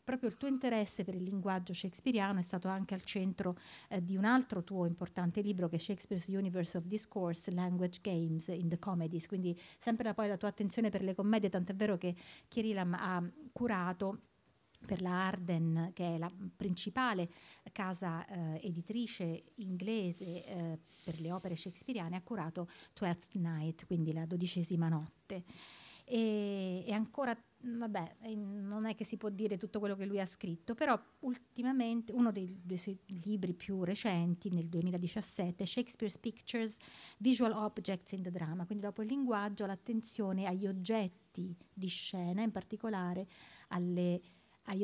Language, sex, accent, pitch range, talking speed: Italian, female, native, 180-215 Hz, 160 wpm